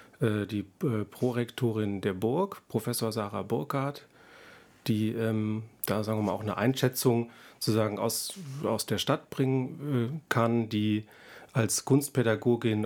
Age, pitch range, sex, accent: 30-49, 105-125 Hz, male, German